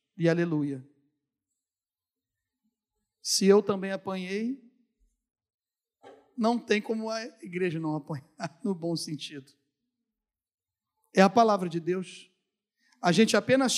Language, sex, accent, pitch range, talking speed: Portuguese, male, Brazilian, 160-225 Hz, 105 wpm